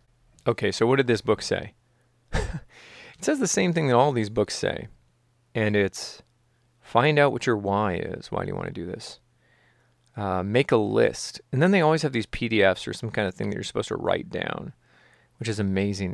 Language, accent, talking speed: English, American, 210 wpm